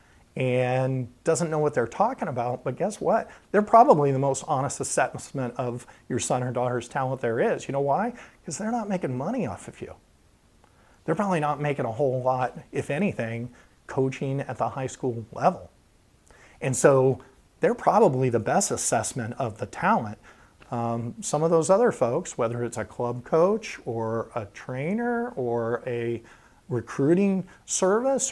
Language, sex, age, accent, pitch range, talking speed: English, male, 40-59, American, 120-160 Hz, 165 wpm